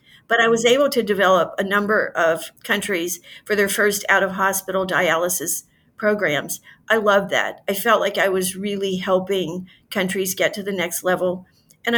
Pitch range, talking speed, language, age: 185-220 Hz, 175 wpm, English, 50-69